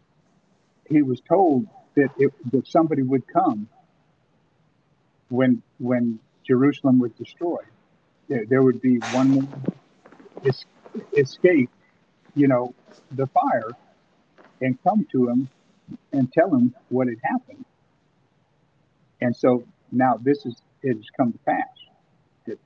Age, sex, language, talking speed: 50-69, male, English, 120 wpm